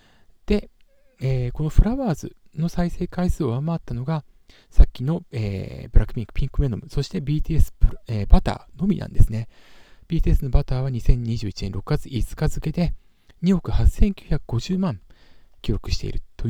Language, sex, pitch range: Japanese, male, 105-175 Hz